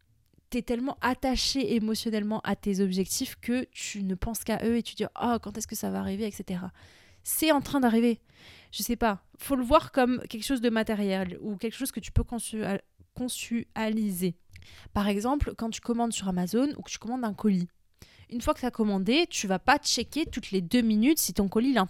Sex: female